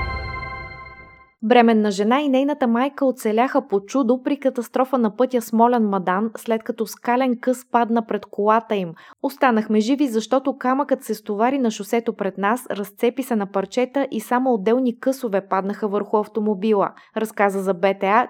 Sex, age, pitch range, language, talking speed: female, 20-39, 200-245 Hz, Bulgarian, 150 wpm